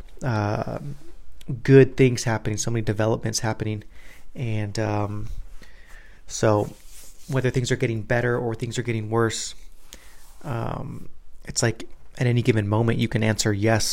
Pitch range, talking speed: 110-120 Hz, 140 wpm